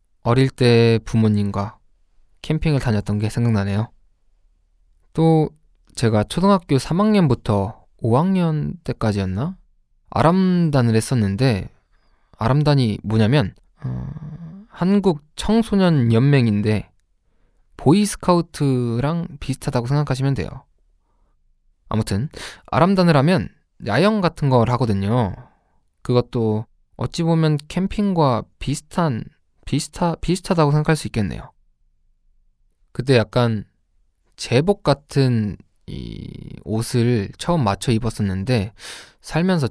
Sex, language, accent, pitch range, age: male, Korean, native, 95-155 Hz, 20-39